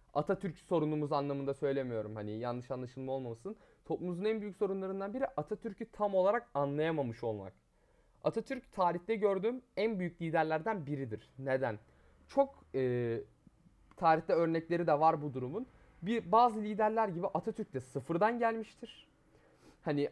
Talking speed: 130 wpm